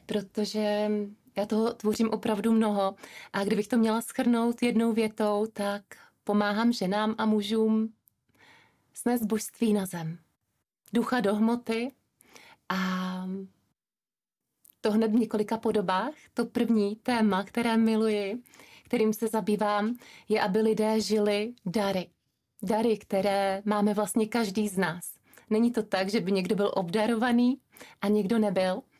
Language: Czech